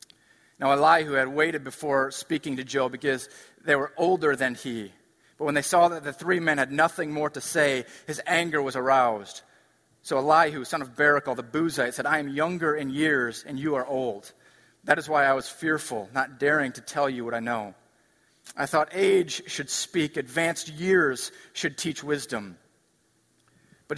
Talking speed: 185 wpm